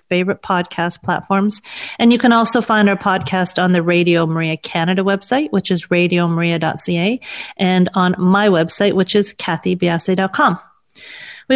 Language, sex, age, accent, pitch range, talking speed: English, female, 40-59, American, 175-215 Hz, 140 wpm